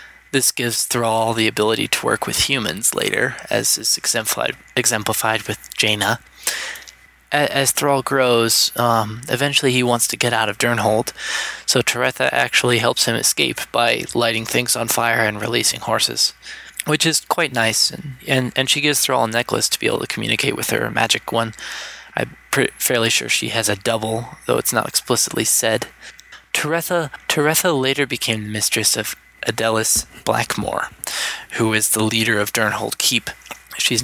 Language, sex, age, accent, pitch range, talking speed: English, male, 20-39, American, 110-130 Hz, 165 wpm